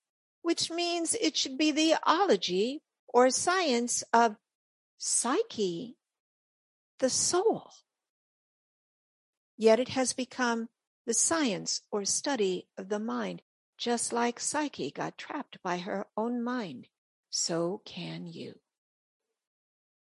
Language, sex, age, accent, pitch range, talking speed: English, female, 60-79, American, 210-280 Hz, 105 wpm